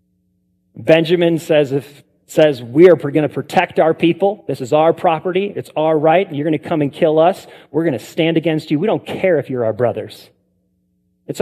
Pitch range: 125-165 Hz